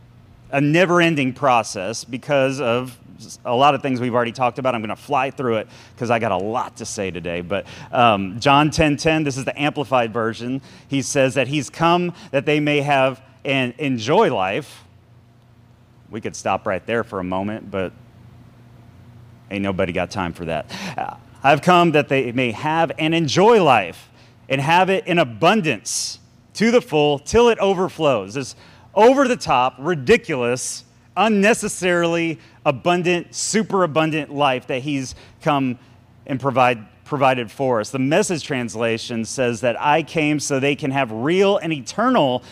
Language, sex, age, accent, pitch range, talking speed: English, male, 30-49, American, 120-155 Hz, 165 wpm